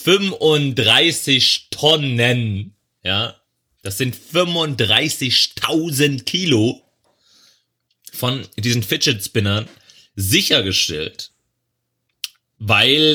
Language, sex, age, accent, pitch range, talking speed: German, male, 30-49, German, 110-140 Hz, 60 wpm